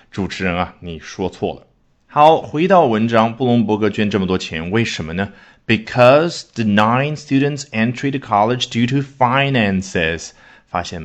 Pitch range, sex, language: 90-125 Hz, male, Chinese